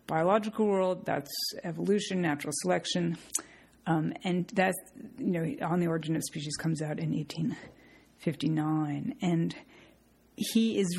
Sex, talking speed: female, 125 wpm